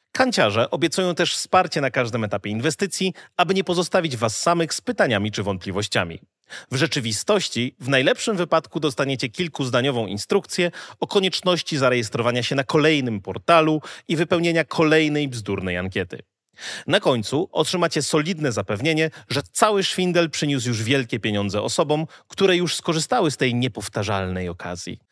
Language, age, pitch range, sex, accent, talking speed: Polish, 30-49, 115-170 Hz, male, native, 135 wpm